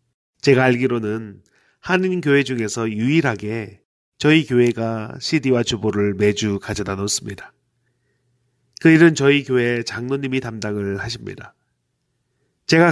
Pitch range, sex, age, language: 115-140 Hz, male, 30-49, Korean